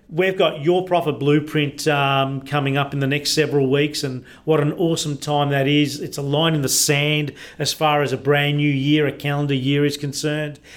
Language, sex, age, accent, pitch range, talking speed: English, male, 40-59, Australian, 145-155 Hz, 210 wpm